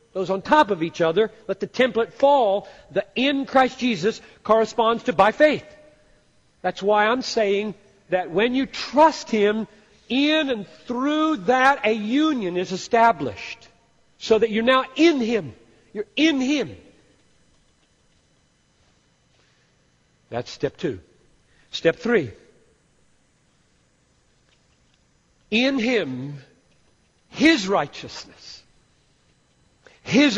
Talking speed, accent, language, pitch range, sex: 105 wpm, American, English, 165-245 Hz, male